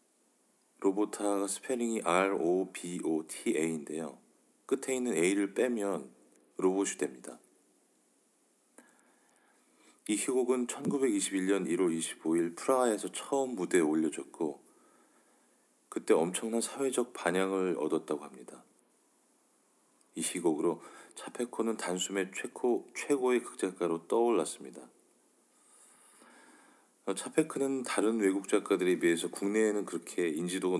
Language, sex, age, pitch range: Korean, male, 40-59, 85-115 Hz